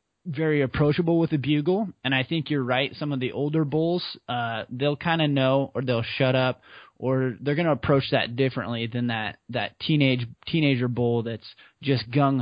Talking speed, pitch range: 195 wpm, 125-160 Hz